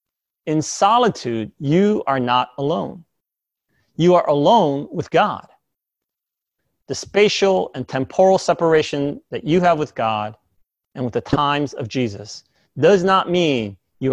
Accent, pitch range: American, 120-170 Hz